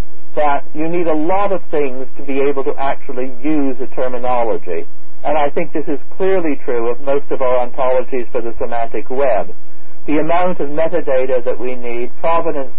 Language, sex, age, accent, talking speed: English, male, 50-69, American, 185 wpm